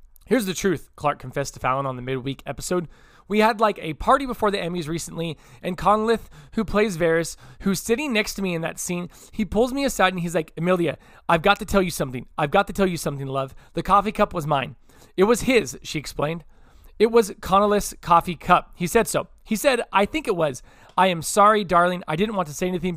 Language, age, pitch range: English, 20-39, 150-200 Hz